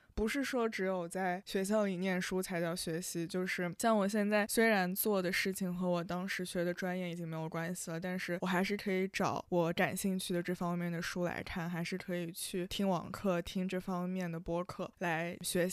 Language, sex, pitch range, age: Chinese, female, 180-210 Hz, 20-39